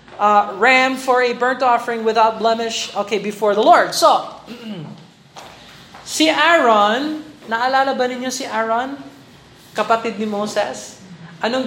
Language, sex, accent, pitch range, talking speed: Filipino, male, native, 170-230 Hz, 125 wpm